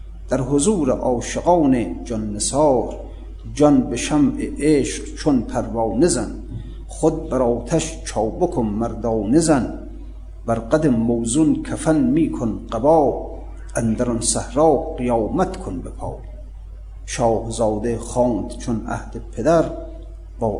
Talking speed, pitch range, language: 100 wpm, 105-125 Hz, Persian